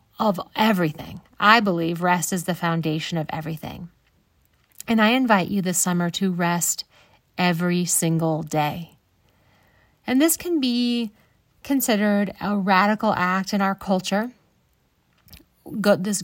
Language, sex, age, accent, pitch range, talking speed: English, female, 30-49, American, 170-205 Hz, 120 wpm